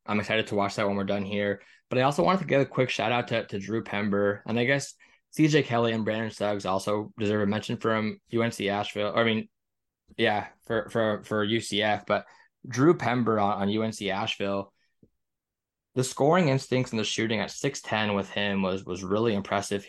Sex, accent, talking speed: male, American, 195 wpm